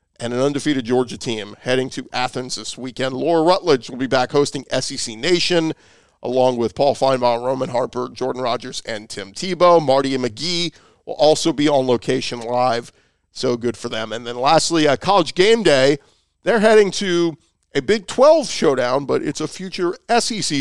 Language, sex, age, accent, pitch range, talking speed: English, male, 40-59, American, 125-160 Hz, 180 wpm